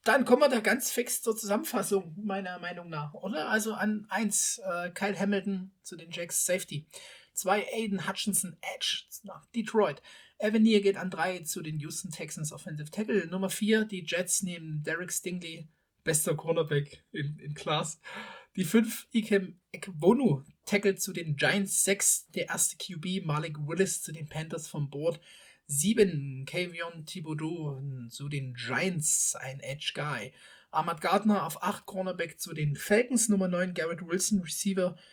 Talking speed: 155 wpm